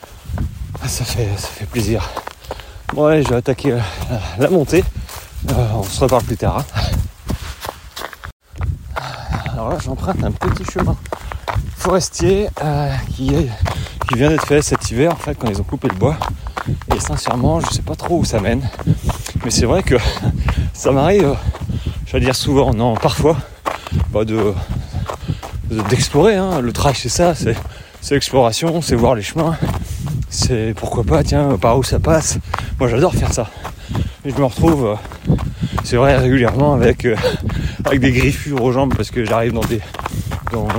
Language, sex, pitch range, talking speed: French, male, 105-135 Hz, 170 wpm